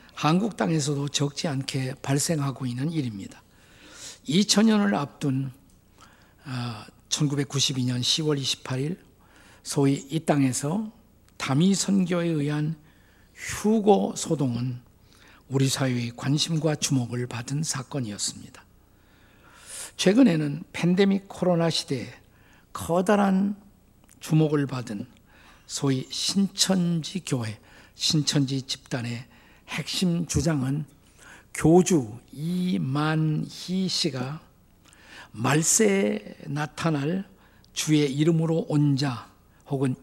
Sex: male